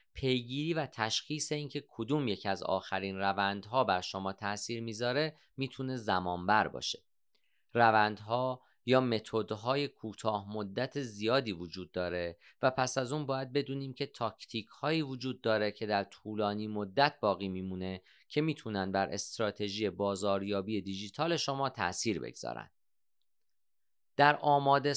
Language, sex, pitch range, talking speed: Persian, male, 100-130 Hz, 125 wpm